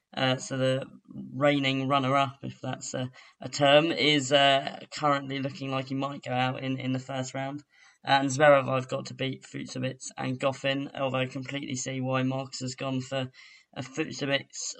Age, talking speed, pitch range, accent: 10-29, 180 wpm, 130-145 Hz, British